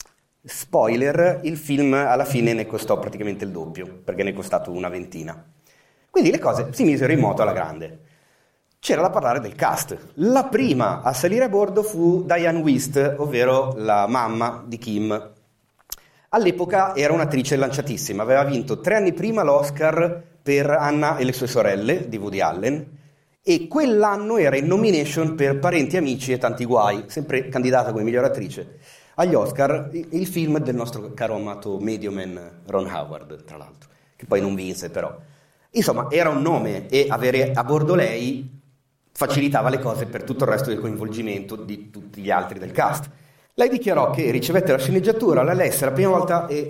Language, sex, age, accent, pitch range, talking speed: Italian, male, 30-49, native, 115-165 Hz, 170 wpm